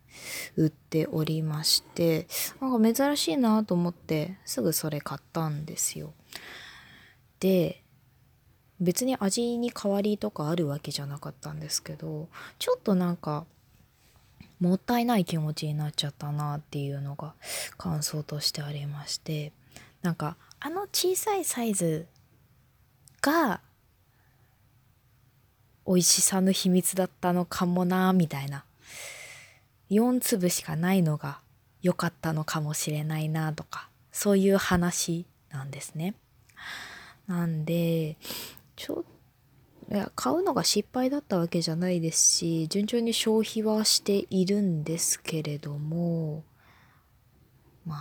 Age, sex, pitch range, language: 20-39, female, 145-185 Hz, Japanese